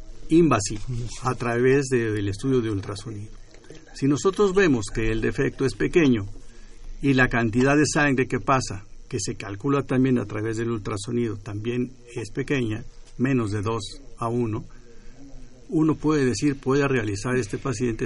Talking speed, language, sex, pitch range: 155 wpm, Spanish, male, 110-135 Hz